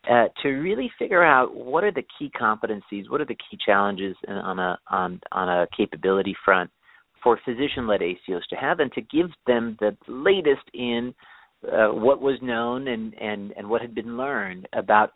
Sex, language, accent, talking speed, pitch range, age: male, English, American, 185 wpm, 100-130 Hz, 40-59